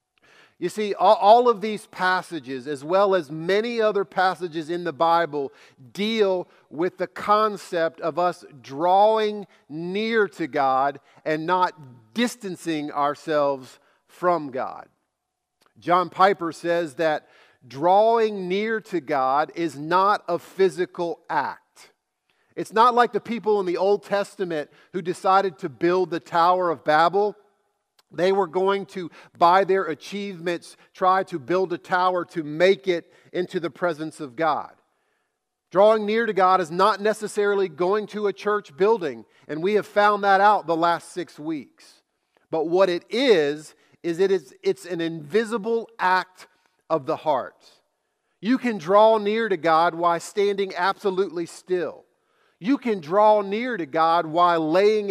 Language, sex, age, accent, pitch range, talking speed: English, male, 50-69, American, 170-210 Hz, 145 wpm